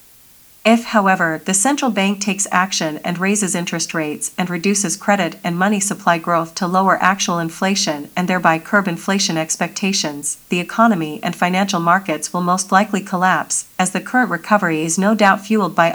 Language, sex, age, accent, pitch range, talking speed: English, female, 40-59, American, 170-205 Hz, 170 wpm